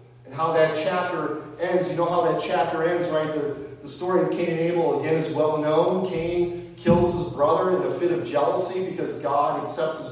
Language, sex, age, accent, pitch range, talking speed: English, male, 40-59, American, 120-160 Hz, 210 wpm